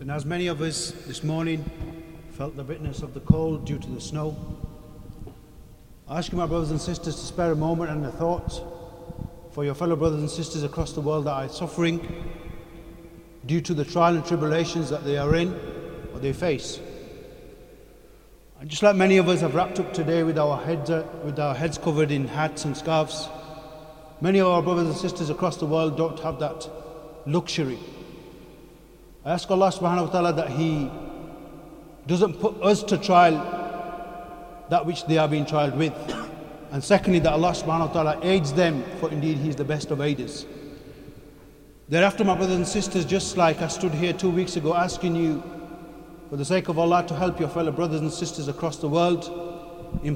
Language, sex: English, male